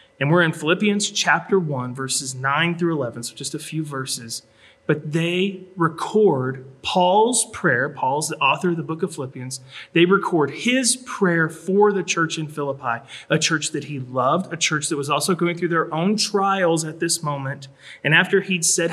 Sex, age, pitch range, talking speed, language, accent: male, 30-49, 135-180 Hz, 185 wpm, English, American